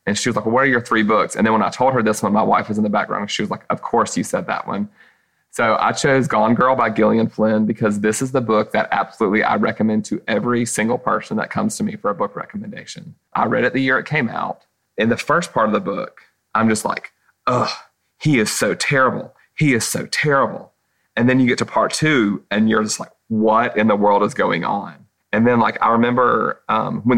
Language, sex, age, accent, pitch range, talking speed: English, male, 30-49, American, 110-130 Hz, 250 wpm